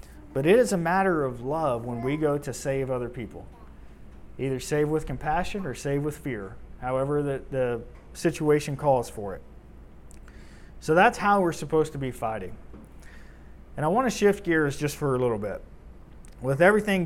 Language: English